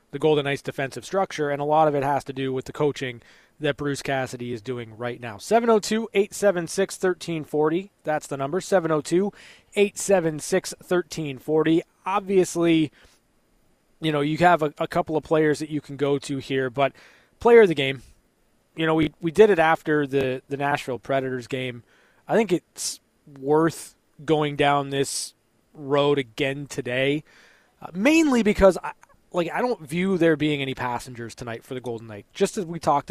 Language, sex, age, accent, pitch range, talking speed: English, male, 20-39, American, 130-165 Hz, 165 wpm